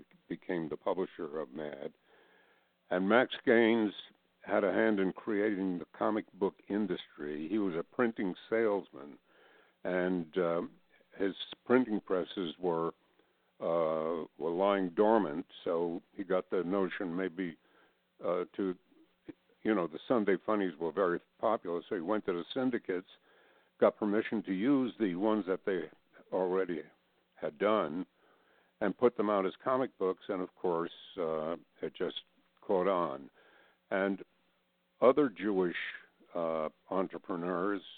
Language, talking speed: English, 135 wpm